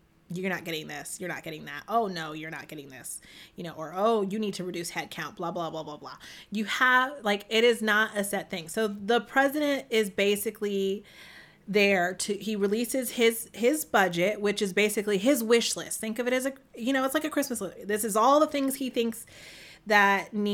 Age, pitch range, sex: 30-49, 185-235 Hz, female